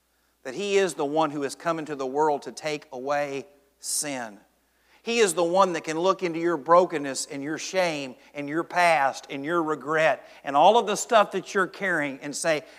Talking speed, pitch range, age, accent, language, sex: 205 wpm, 155-215 Hz, 50-69, American, English, male